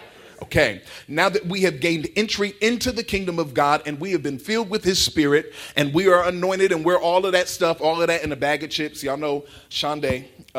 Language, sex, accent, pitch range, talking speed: English, male, American, 135-175 Hz, 230 wpm